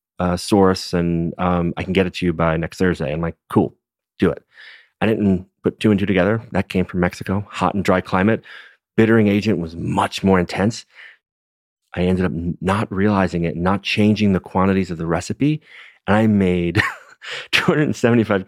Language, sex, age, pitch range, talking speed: English, male, 30-49, 85-105 Hz, 180 wpm